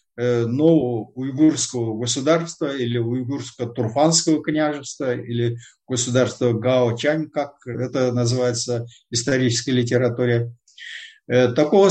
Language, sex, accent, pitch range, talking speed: Russian, male, native, 120-165 Hz, 80 wpm